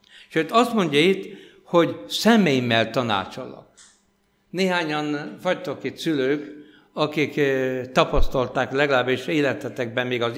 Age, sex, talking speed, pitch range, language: 60-79, male, 100 wpm, 130-170 Hz, Hungarian